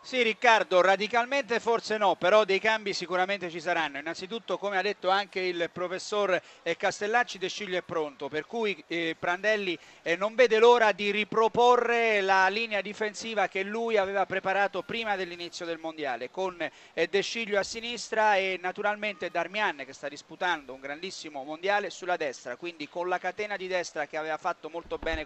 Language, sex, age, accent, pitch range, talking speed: Italian, male, 40-59, native, 175-215 Hz, 165 wpm